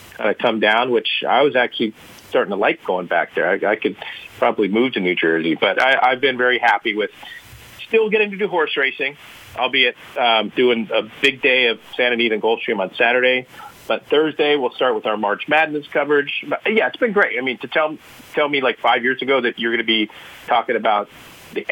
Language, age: English, 40-59